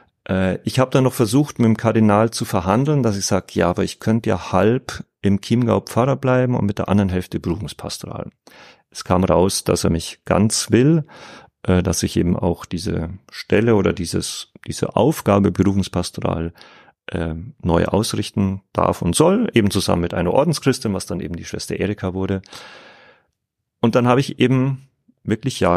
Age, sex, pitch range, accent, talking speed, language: 40-59, male, 90-115 Hz, German, 165 wpm, German